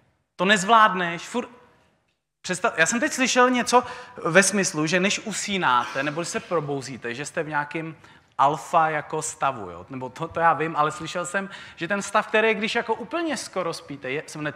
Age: 30-49